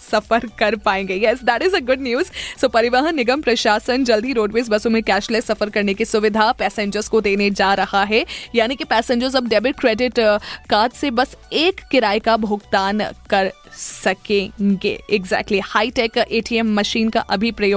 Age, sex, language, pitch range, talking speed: 20-39, female, Hindi, 205-245 Hz, 80 wpm